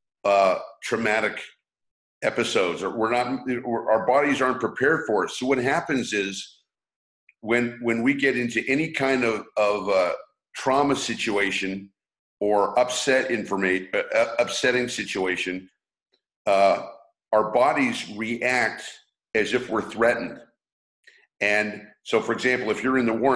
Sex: male